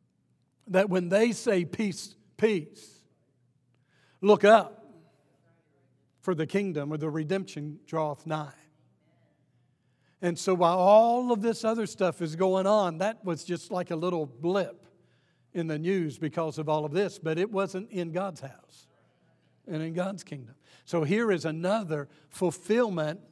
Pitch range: 145-195 Hz